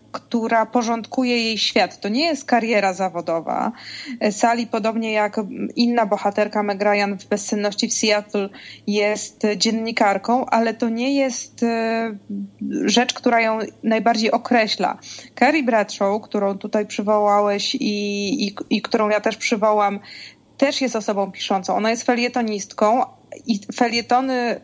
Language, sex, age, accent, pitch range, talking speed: Polish, female, 20-39, native, 210-250 Hz, 125 wpm